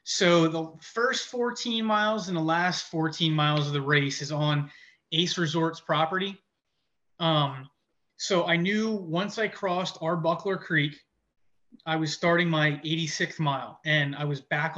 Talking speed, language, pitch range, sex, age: 150 wpm, English, 150-170 Hz, male, 30-49